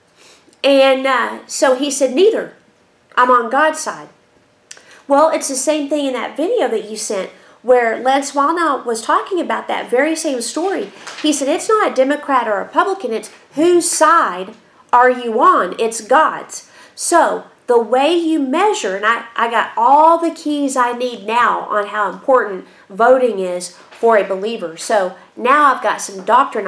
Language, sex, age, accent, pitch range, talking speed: English, female, 40-59, American, 220-300 Hz, 175 wpm